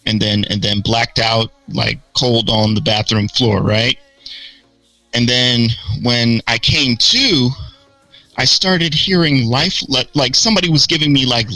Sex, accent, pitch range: male, American, 115-160 Hz